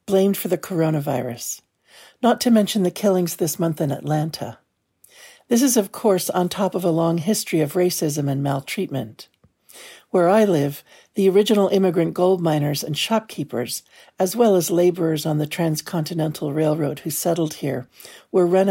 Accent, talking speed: American, 160 wpm